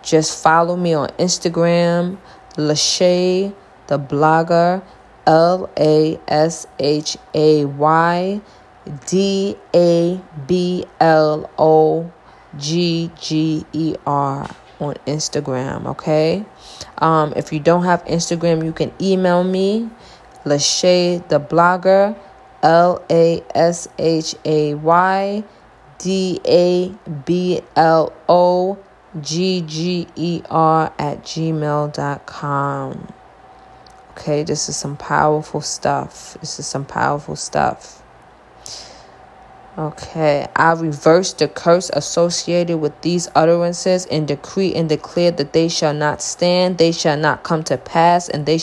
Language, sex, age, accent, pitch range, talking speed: English, female, 20-39, American, 150-175 Hz, 110 wpm